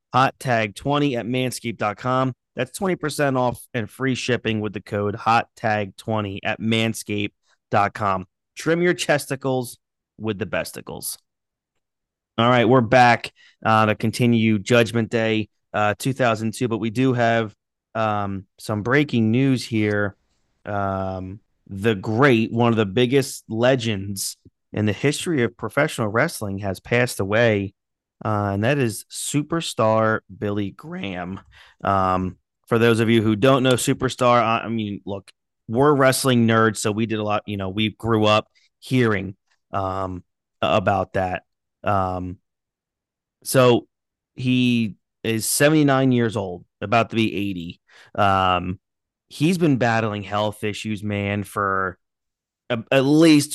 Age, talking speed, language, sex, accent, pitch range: 30-49, 135 wpm, English, male, American, 100-125 Hz